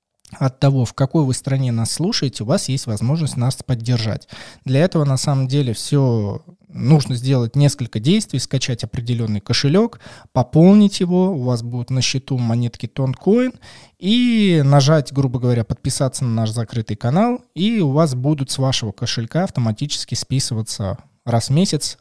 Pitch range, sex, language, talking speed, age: 115-150 Hz, male, Russian, 155 wpm, 20-39